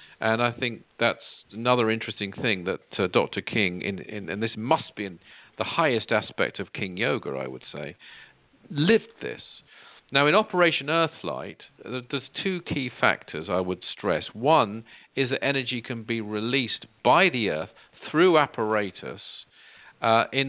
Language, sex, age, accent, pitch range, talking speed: English, male, 50-69, British, 105-145 Hz, 160 wpm